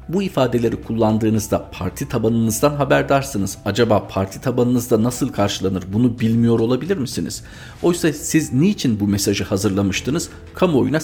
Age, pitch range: 50-69, 100-130 Hz